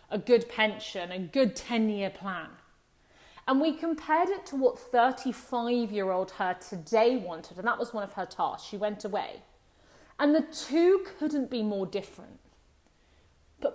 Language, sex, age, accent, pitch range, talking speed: English, female, 30-49, British, 195-265 Hz, 155 wpm